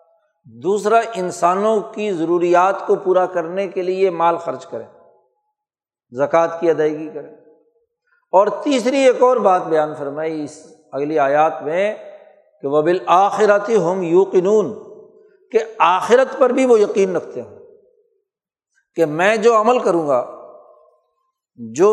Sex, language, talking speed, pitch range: male, Urdu, 130 wpm, 175-230 Hz